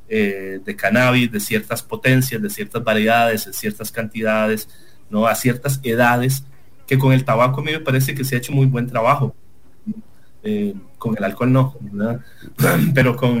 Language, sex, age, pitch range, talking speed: English, male, 30-49, 110-140 Hz, 170 wpm